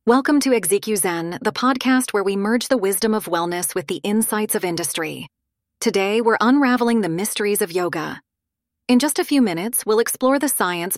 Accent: American